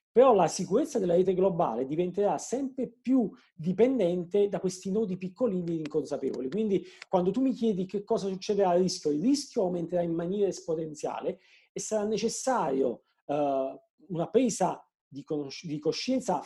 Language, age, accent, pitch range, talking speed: Italian, 40-59, native, 170-230 Hz, 155 wpm